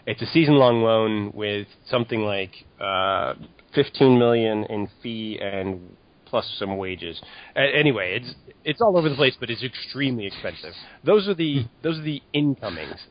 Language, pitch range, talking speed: English, 105-140 Hz, 175 wpm